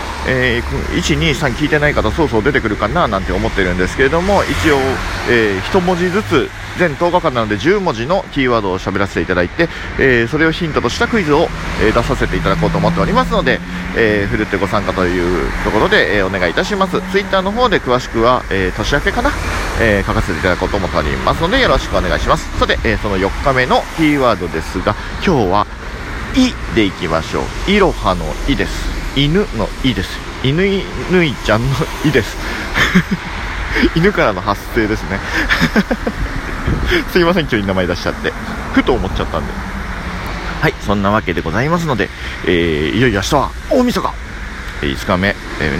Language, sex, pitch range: Japanese, male, 90-140 Hz